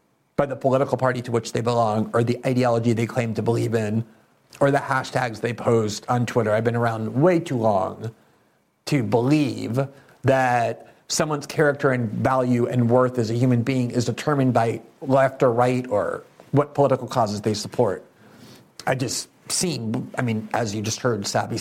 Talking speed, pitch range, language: 175 wpm, 115-145 Hz, English